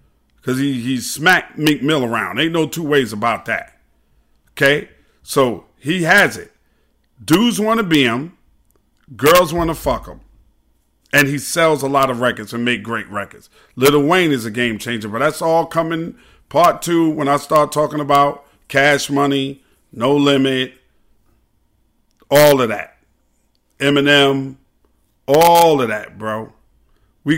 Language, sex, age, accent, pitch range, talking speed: English, male, 40-59, American, 115-145 Hz, 150 wpm